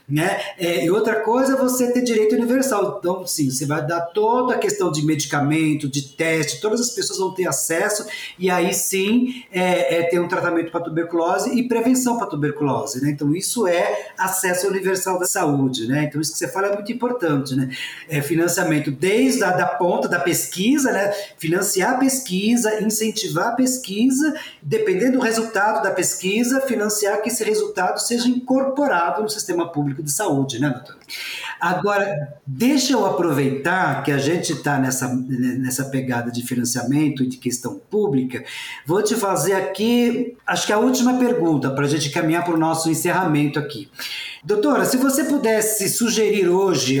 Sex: male